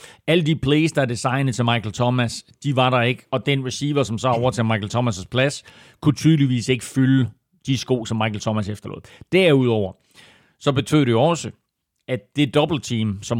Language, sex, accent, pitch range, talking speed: Danish, male, native, 115-145 Hz, 195 wpm